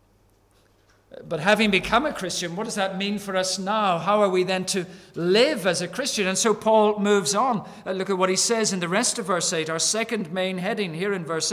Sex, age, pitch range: male, 50-69, 170-220 Hz